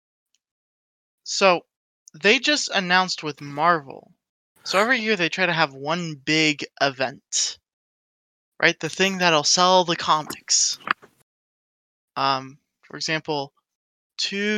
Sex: male